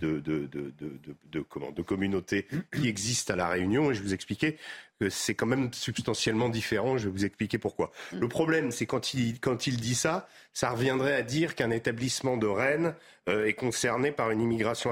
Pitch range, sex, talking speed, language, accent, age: 100-135 Hz, male, 215 wpm, French, French, 40-59